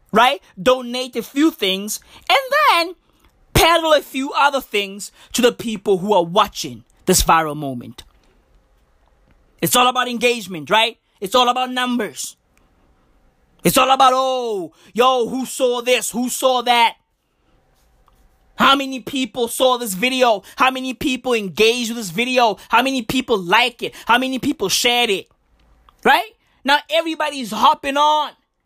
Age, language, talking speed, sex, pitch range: 20-39, English, 145 wpm, male, 235-315 Hz